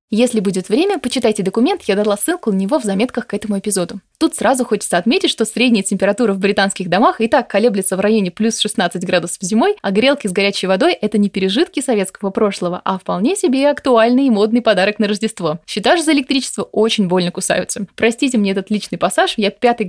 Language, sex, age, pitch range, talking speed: Russian, female, 20-39, 205-270 Hz, 200 wpm